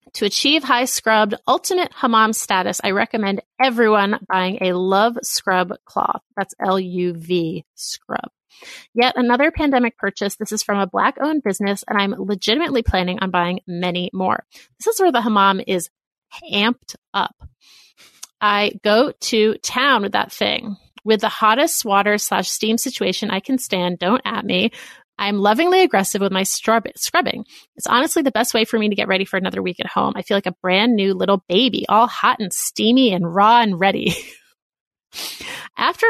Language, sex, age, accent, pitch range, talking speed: English, female, 30-49, American, 190-250 Hz, 170 wpm